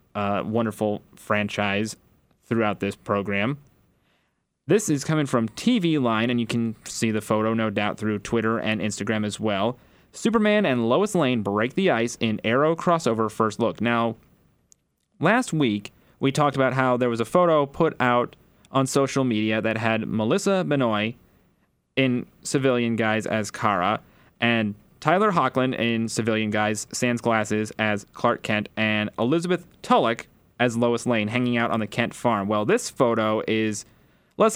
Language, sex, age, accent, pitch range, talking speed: English, male, 30-49, American, 110-130 Hz, 160 wpm